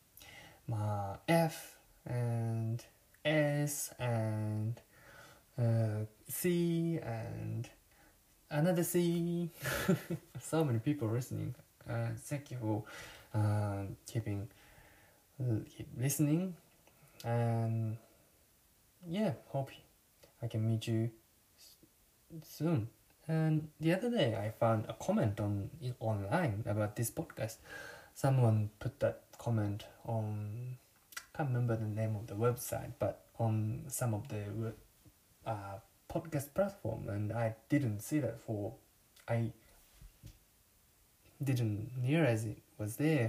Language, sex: English, male